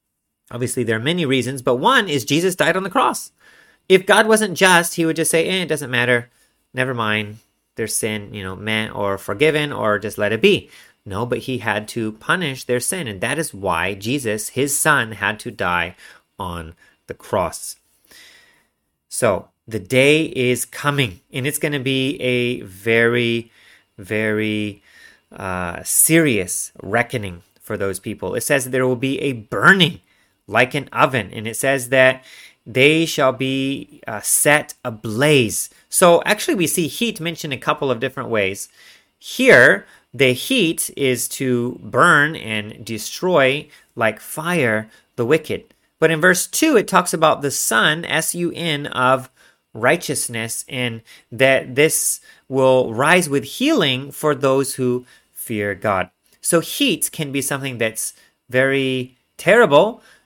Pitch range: 115-150 Hz